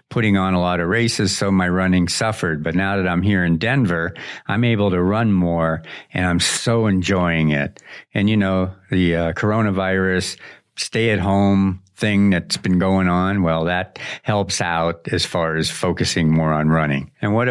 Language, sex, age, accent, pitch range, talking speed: English, male, 60-79, American, 85-105 Hz, 180 wpm